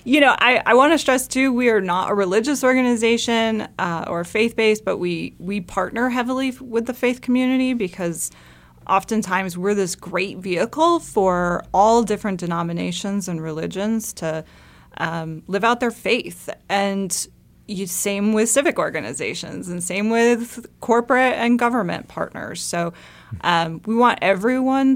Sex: female